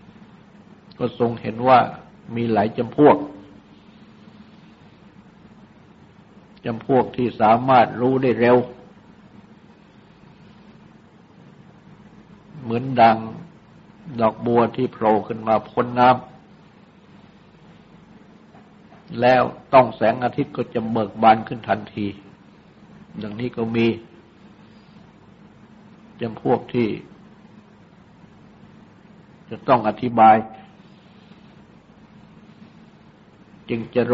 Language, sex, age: Thai, male, 60-79